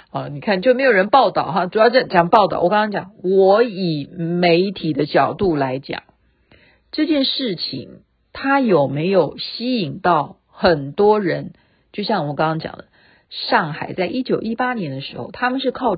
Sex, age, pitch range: female, 50-69, 165-255 Hz